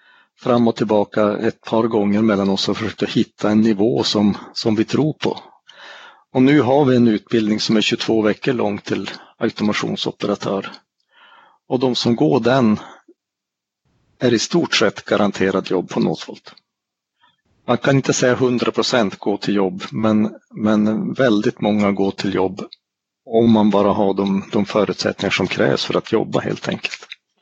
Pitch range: 105-125 Hz